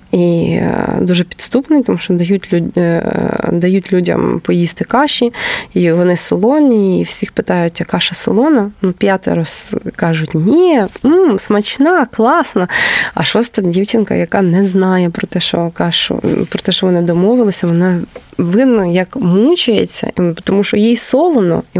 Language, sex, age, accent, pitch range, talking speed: Ukrainian, female, 20-39, native, 175-225 Hz, 135 wpm